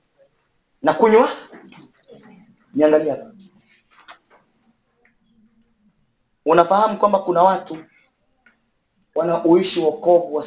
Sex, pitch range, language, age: male, 135-195 Hz, English, 30-49